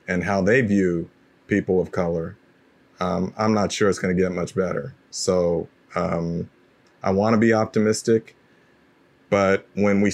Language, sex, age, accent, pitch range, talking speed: English, male, 40-59, American, 100-115 Hz, 160 wpm